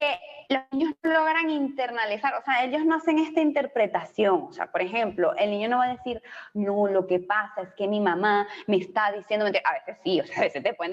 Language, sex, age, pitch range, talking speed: Spanish, female, 20-39, 220-300 Hz, 235 wpm